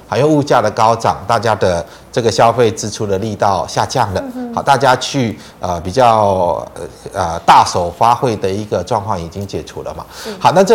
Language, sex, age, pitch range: Chinese, male, 30-49, 100-135 Hz